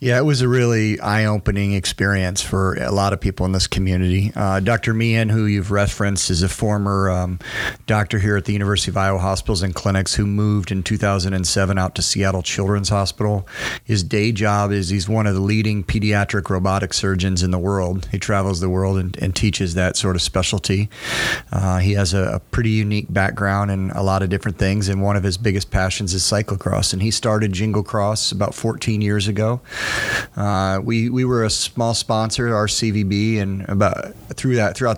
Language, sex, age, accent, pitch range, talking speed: English, male, 30-49, American, 95-110 Hz, 195 wpm